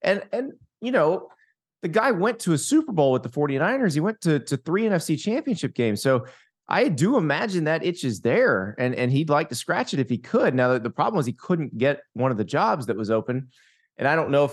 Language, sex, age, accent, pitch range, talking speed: English, male, 30-49, American, 120-150 Hz, 250 wpm